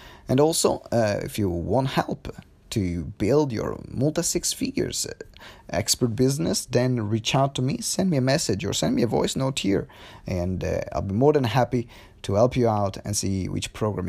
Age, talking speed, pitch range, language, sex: 30-49, 190 wpm, 100-135 Hz, English, male